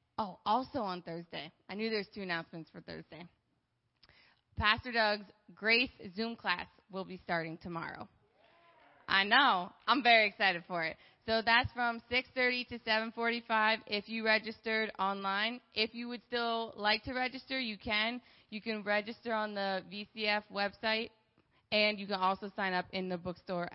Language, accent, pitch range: English, American, 185-225 Hz